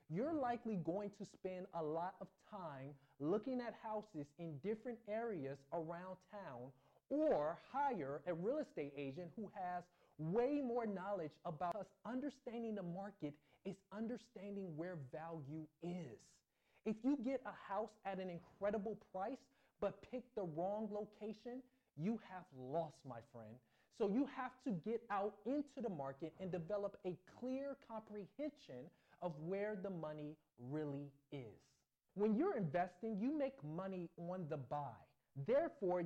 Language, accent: English, American